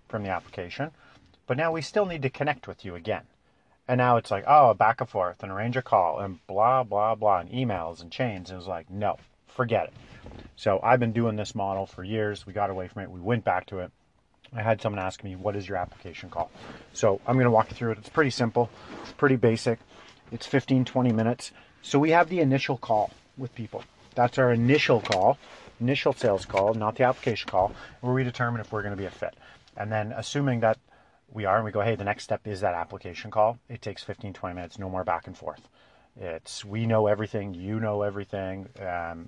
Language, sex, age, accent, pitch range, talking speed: English, male, 40-59, American, 95-120 Hz, 225 wpm